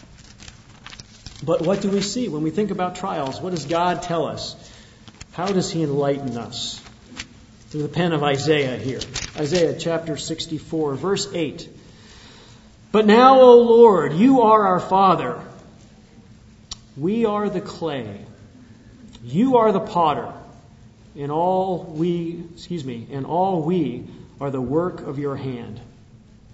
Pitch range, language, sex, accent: 115-175 Hz, English, male, American